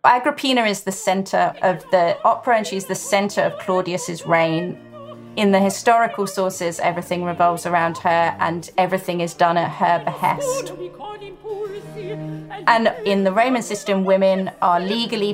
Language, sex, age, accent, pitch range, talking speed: English, female, 30-49, British, 175-225 Hz, 145 wpm